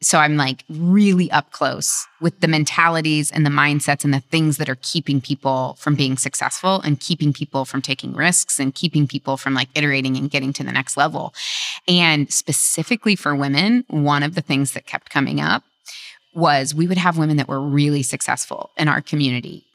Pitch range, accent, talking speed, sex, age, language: 140-175 Hz, American, 195 wpm, female, 20-39, English